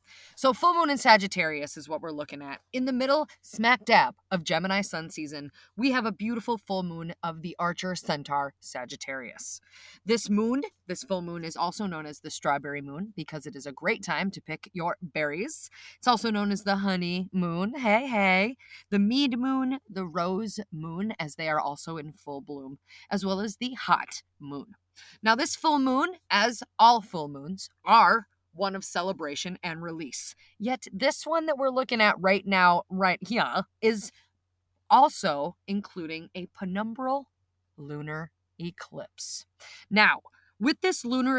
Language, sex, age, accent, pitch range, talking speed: English, female, 30-49, American, 155-245 Hz, 170 wpm